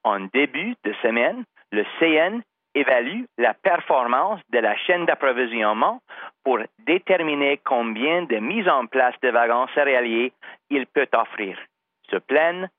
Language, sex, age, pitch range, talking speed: English, male, 40-59, 115-165 Hz, 130 wpm